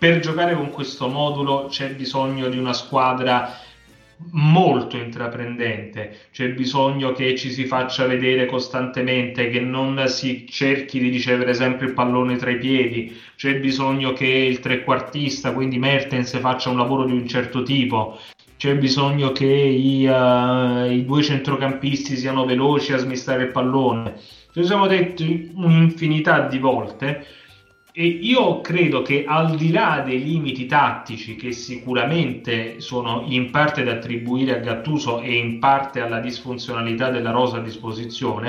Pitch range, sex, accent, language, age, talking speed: 120-140 Hz, male, native, Italian, 30-49, 145 wpm